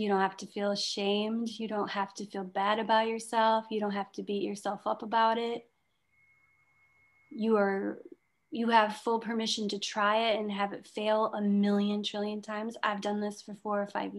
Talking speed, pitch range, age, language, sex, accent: 200 wpm, 200-230 Hz, 30-49, English, female, American